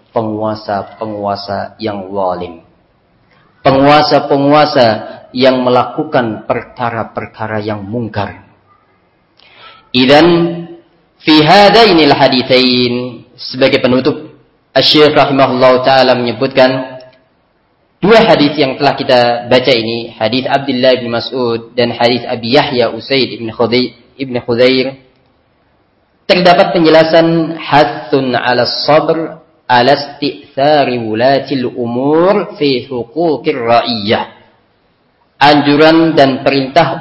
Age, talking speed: 30-49, 75 wpm